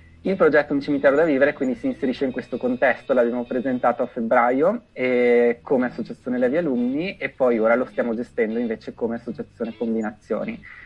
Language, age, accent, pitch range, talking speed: Italian, 20-39, native, 120-140 Hz, 175 wpm